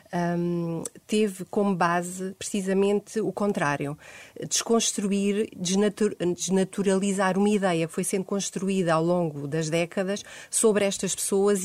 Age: 30-49